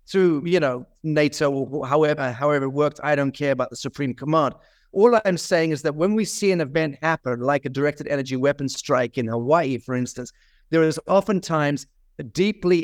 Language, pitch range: English, 135-165 Hz